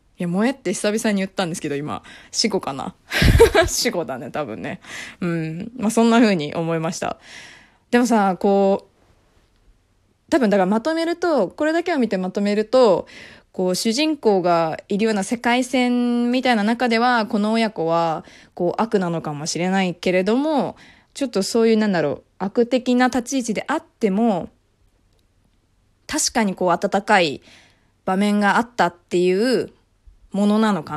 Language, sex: Japanese, female